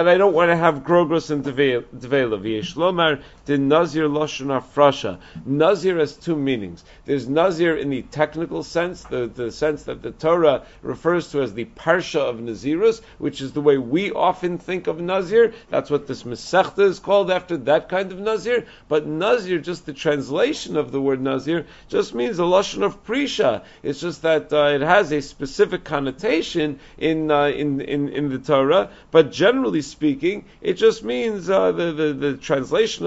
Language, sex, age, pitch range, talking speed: English, male, 50-69, 145-215 Hz, 180 wpm